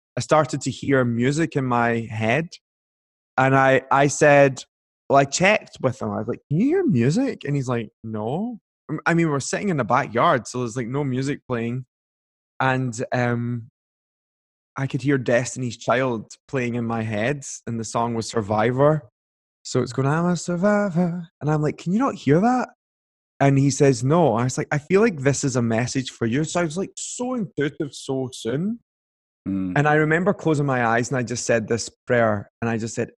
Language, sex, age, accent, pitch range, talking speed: English, male, 20-39, British, 115-145 Hz, 200 wpm